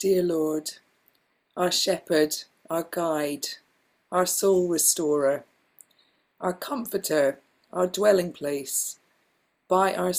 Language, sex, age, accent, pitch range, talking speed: English, female, 40-59, British, 155-175 Hz, 95 wpm